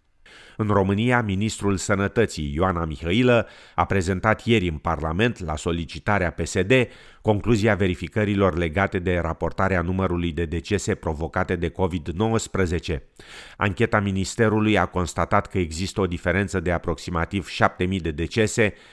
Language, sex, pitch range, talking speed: Romanian, male, 85-105 Hz, 120 wpm